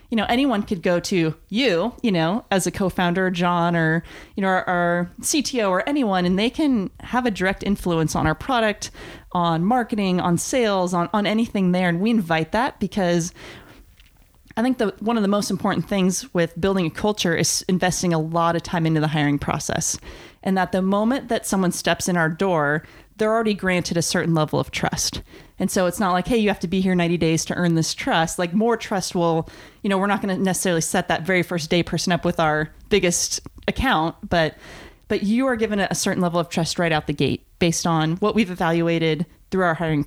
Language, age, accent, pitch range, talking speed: English, 30-49, American, 170-205 Hz, 220 wpm